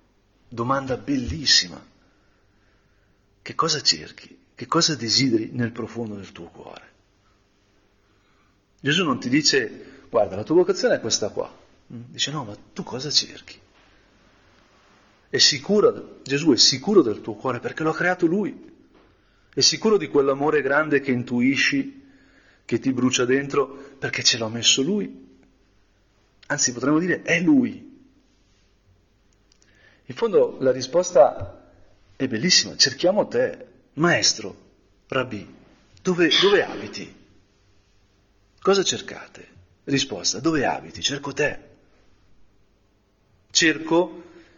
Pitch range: 100-155 Hz